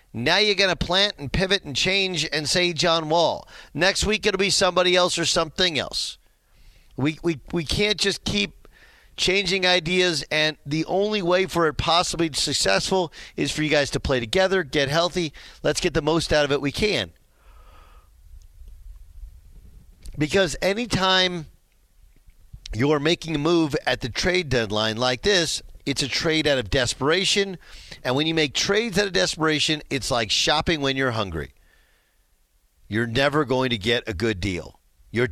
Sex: male